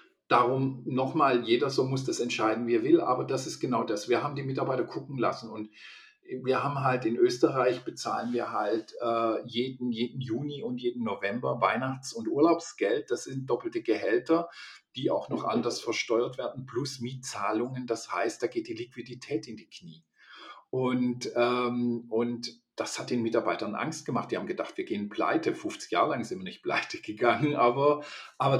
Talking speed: 185 wpm